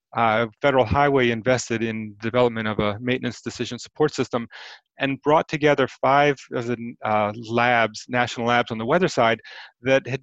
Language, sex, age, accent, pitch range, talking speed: English, male, 30-49, American, 110-130 Hz, 165 wpm